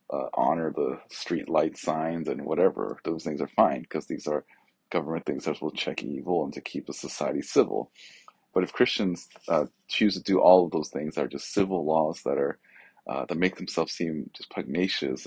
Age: 30-49